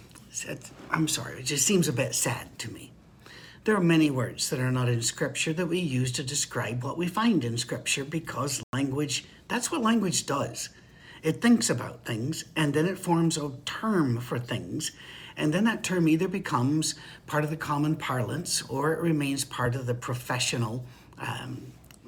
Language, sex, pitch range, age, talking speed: English, male, 125-160 Hz, 60-79, 180 wpm